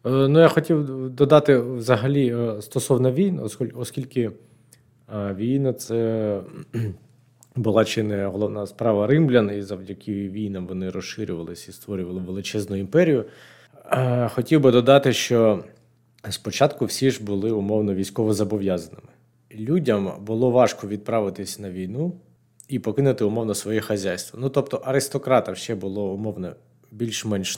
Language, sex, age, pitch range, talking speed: Ukrainian, male, 20-39, 100-125 Hz, 120 wpm